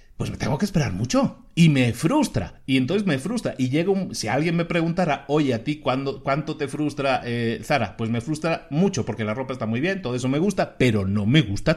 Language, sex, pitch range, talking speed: Spanish, male, 120-170 Hz, 240 wpm